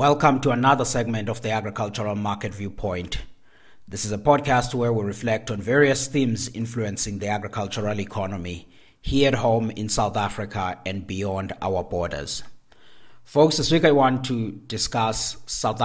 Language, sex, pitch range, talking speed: English, male, 95-115 Hz, 155 wpm